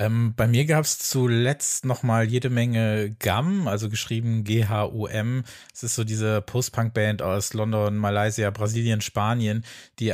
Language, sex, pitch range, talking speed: German, male, 100-120 Hz, 140 wpm